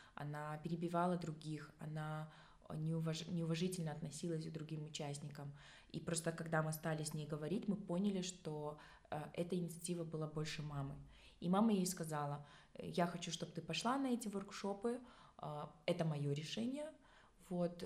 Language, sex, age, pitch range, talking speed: Russian, female, 20-39, 160-185 Hz, 140 wpm